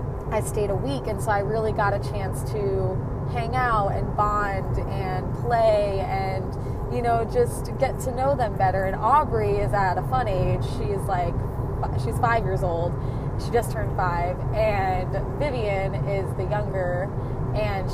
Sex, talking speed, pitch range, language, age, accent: female, 165 wpm, 125-135 Hz, English, 20-39, American